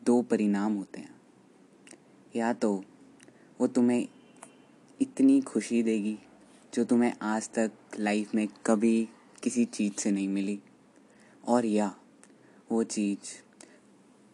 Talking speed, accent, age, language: 115 wpm, native, 20-39, Hindi